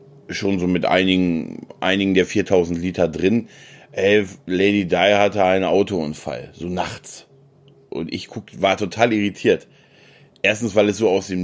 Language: German